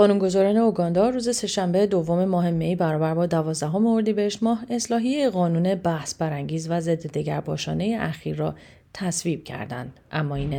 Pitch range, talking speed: 150-185 Hz, 145 wpm